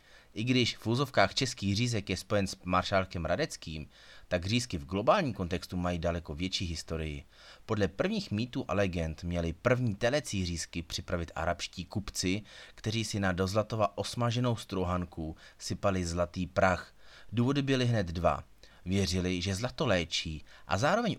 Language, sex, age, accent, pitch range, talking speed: Czech, male, 30-49, native, 90-115 Hz, 145 wpm